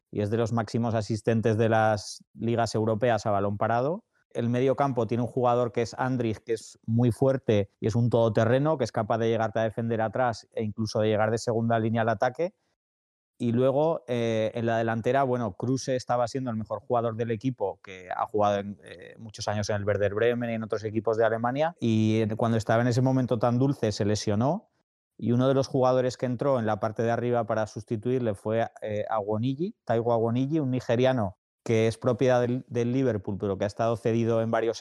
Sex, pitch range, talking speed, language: male, 110-125 Hz, 210 wpm, Spanish